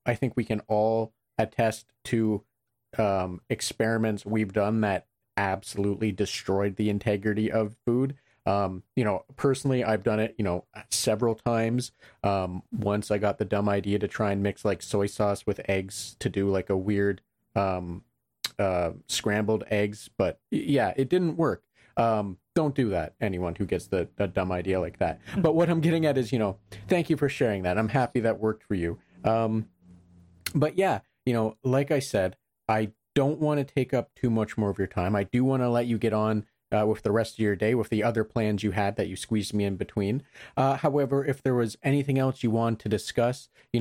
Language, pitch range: English, 105-135 Hz